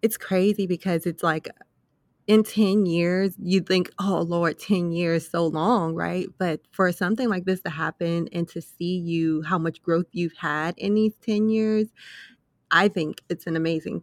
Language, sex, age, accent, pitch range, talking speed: English, female, 20-39, American, 160-185 Hz, 185 wpm